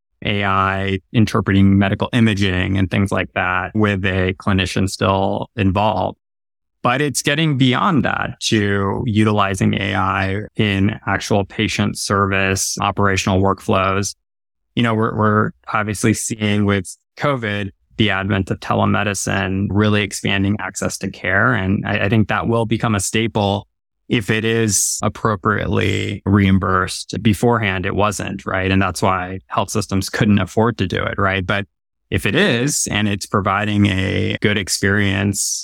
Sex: male